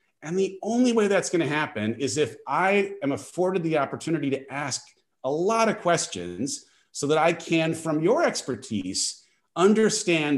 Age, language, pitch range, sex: 30-49, English, 125-190 Hz, male